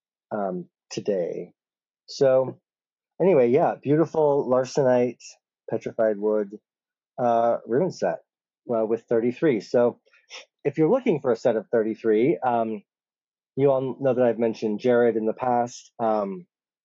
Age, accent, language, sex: 30-49, American, English, male